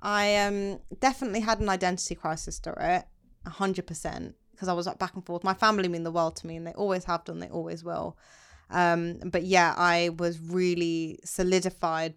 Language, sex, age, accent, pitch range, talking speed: English, female, 20-39, British, 170-200 Hz, 190 wpm